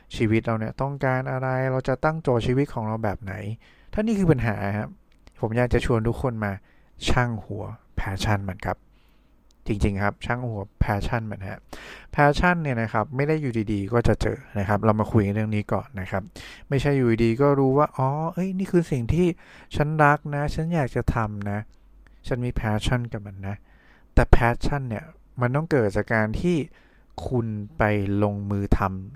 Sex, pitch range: male, 105-130 Hz